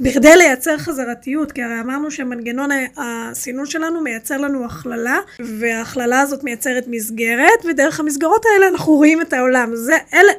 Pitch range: 250-325 Hz